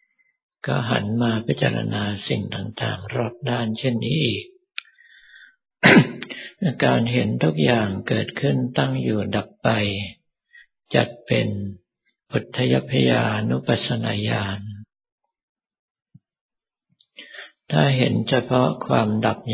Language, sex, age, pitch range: Thai, male, 60-79, 100-125 Hz